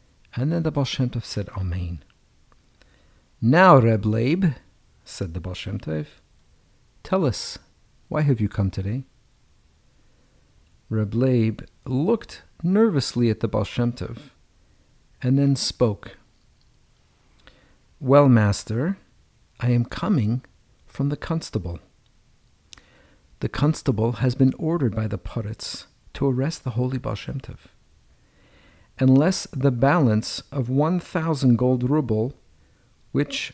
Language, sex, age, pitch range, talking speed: English, male, 50-69, 100-135 Hz, 105 wpm